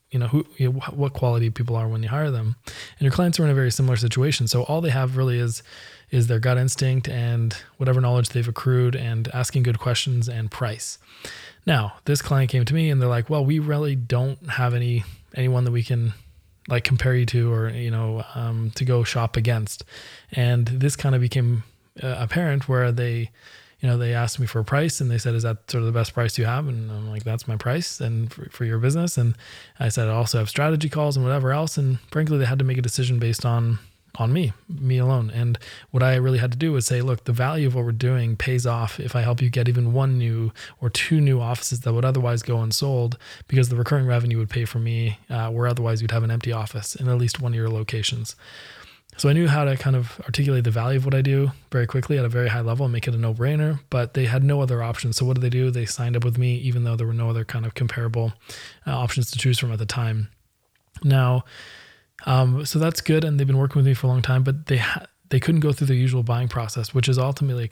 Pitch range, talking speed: 115-130 Hz, 255 wpm